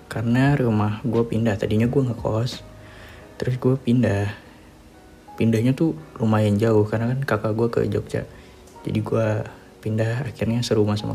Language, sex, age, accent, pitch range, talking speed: Indonesian, male, 20-39, native, 105-125 Hz, 145 wpm